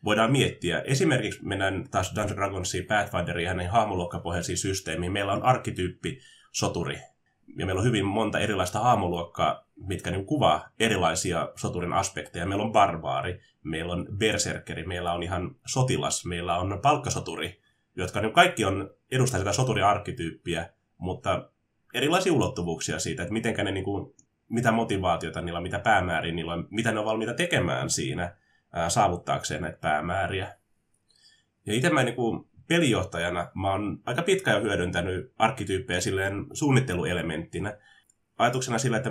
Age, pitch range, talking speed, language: 20-39, 90-115 Hz, 140 wpm, Finnish